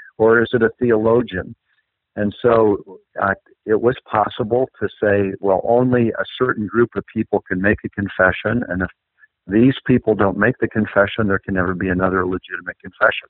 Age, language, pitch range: 50-69, English, 95-115 Hz